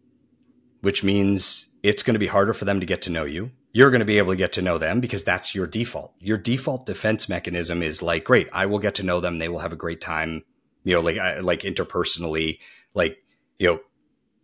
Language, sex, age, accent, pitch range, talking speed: English, male, 30-49, American, 90-115 Hz, 230 wpm